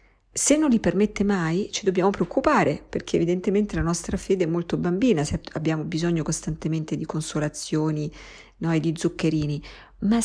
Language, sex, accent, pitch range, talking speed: Italian, female, native, 165-215 Hz, 150 wpm